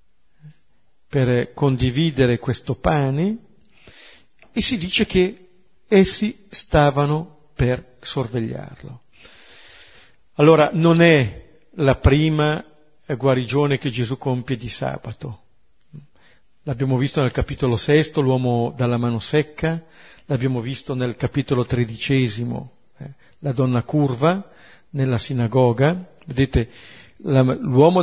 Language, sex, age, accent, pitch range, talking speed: Italian, male, 50-69, native, 125-150 Hz, 95 wpm